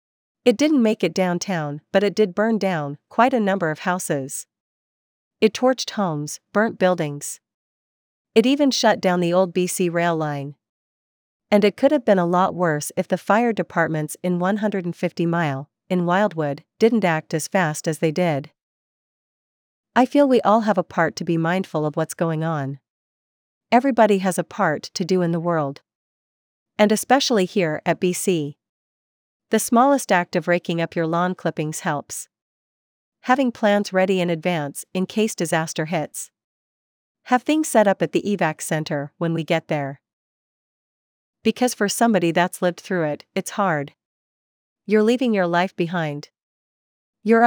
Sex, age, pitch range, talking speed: female, 40-59, 155-205 Hz, 160 wpm